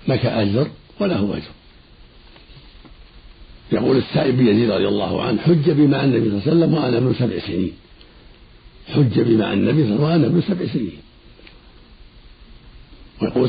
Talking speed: 140 wpm